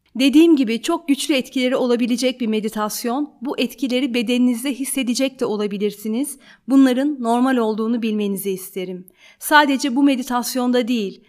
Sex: female